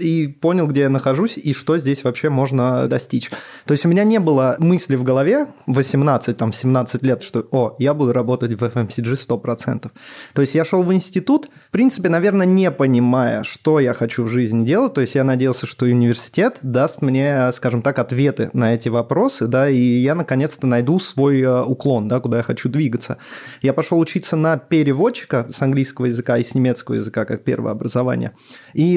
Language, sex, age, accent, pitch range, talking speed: Russian, male, 20-39, native, 120-160 Hz, 180 wpm